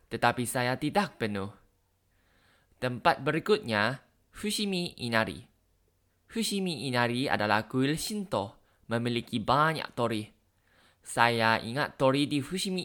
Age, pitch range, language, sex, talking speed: 20-39, 100-140 Hz, Indonesian, male, 100 wpm